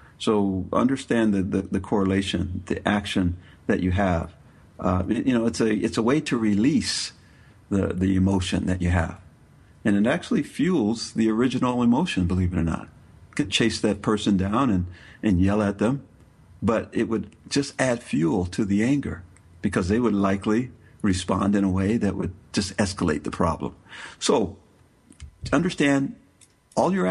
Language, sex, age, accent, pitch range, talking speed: English, male, 50-69, American, 95-110 Hz, 170 wpm